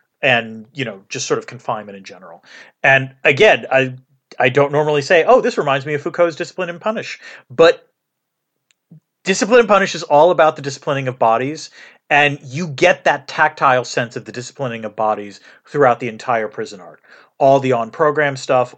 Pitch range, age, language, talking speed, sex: 120-165 Hz, 40-59, English, 180 wpm, male